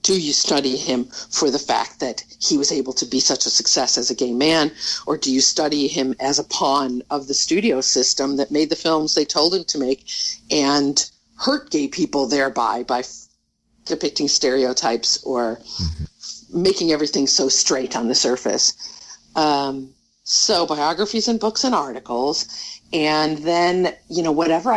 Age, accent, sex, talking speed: 50-69, American, female, 165 wpm